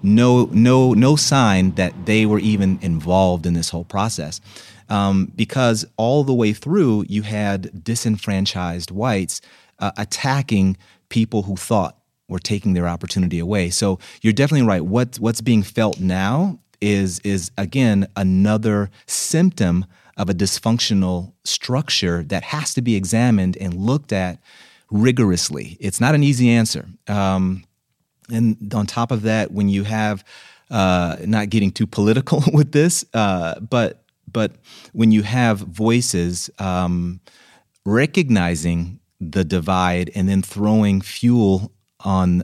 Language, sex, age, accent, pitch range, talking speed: English, male, 30-49, American, 95-115 Hz, 135 wpm